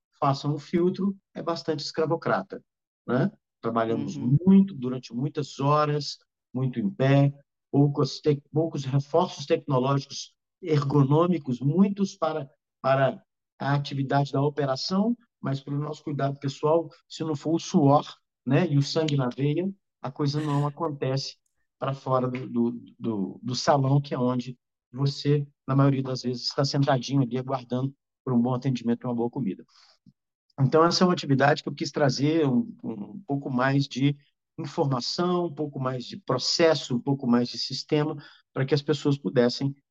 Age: 50-69